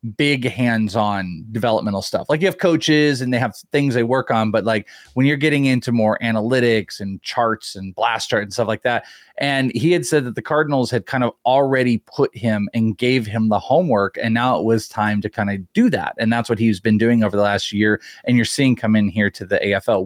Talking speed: 235 wpm